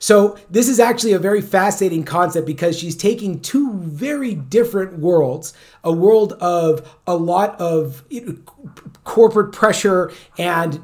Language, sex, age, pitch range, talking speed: English, male, 30-49, 165-200 Hz, 135 wpm